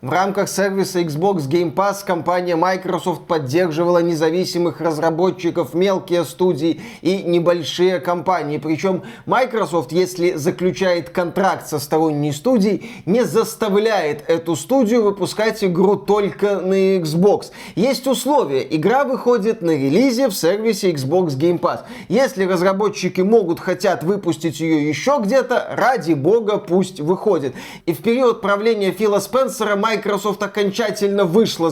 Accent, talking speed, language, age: native, 125 wpm, Russian, 20-39